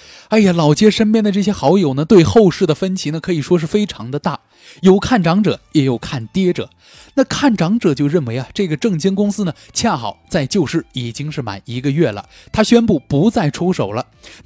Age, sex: 20-39, male